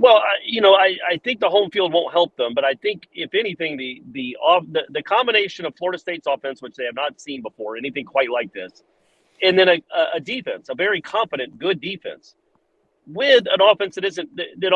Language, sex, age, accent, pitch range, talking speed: English, male, 40-59, American, 165-210 Hz, 220 wpm